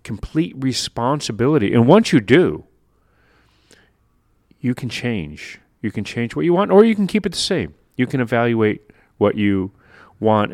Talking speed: 160 wpm